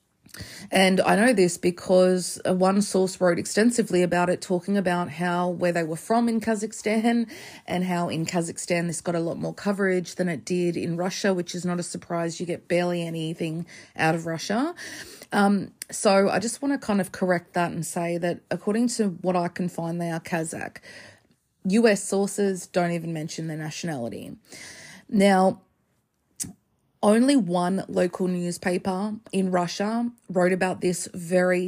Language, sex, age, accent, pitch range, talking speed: English, female, 30-49, Australian, 175-200 Hz, 165 wpm